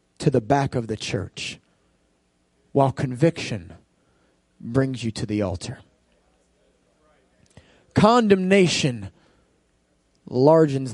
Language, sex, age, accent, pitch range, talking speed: English, male, 30-49, American, 100-140 Hz, 80 wpm